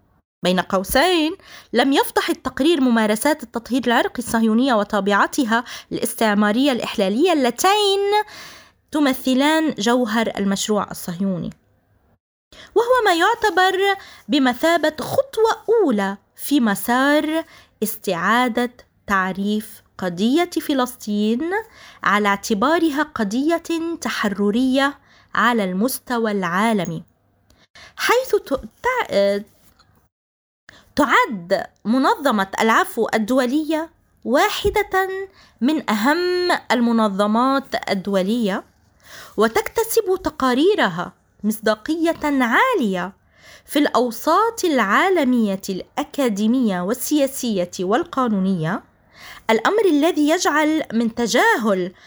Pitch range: 210-320 Hz